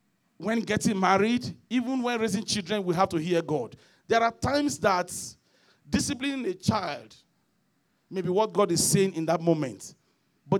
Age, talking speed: 40-59, 165 wpm